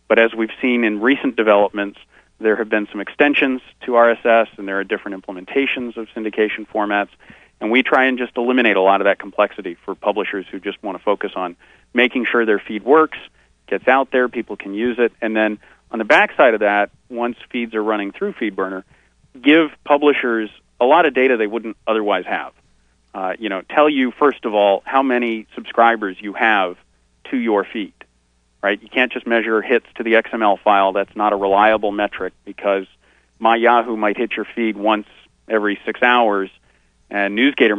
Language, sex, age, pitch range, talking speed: English, male, 40-59, 100-120 Hz, 190 wpm